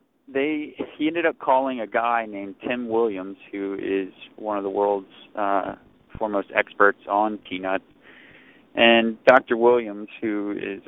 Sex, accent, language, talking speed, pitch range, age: male, American, English, 145 wpm, 100-115 Hz, 20-39